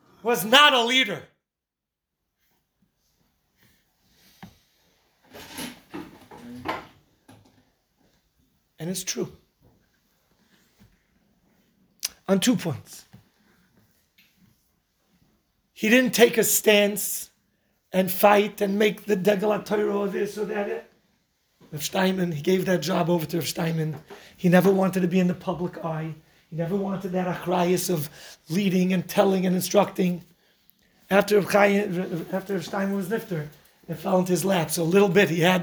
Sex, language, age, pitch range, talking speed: male, English, 40-59, 170-205 Hz, 115 wpm